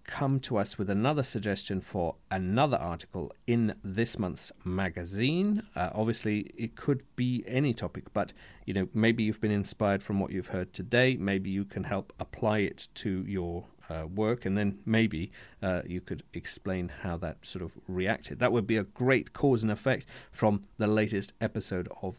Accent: British